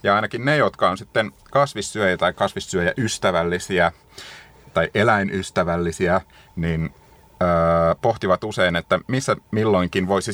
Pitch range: 90-110 Hz